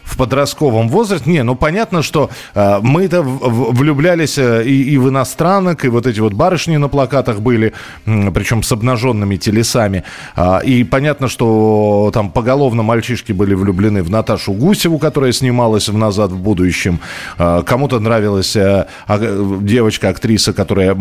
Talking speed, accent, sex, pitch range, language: 130 wpm, native, male, 100-135 Hz, Russian